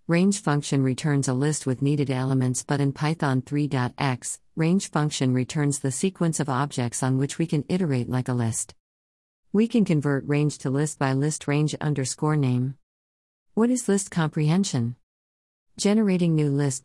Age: 50-69